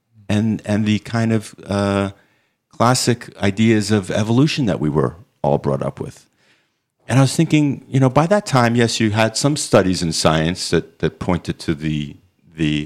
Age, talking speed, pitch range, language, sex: 50-69, 180 wpm, 90-130 Hz, English, male